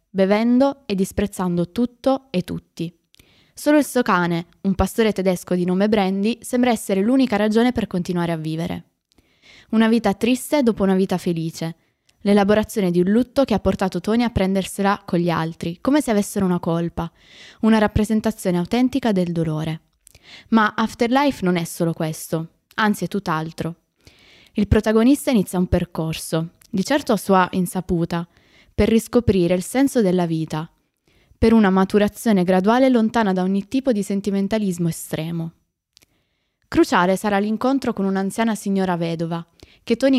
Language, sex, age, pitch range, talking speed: Italian, female, 20-39, 175-220 Hz, 150 wpm